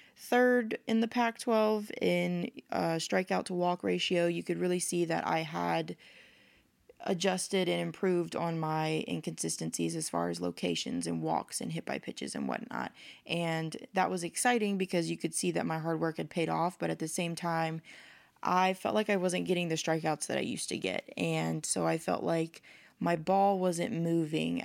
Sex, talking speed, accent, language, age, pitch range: female, 185 wpm, American, English, 20-39, 155-180 Hz